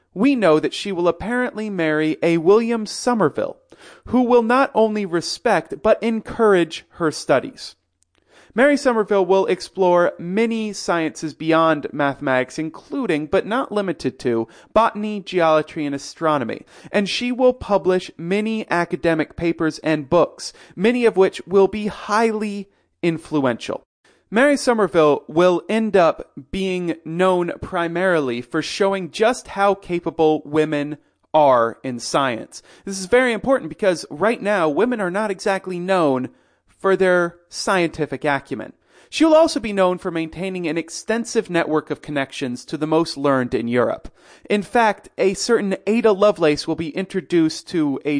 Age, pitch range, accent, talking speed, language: 30-49, 155-210 Hz, American, 140 wpm, English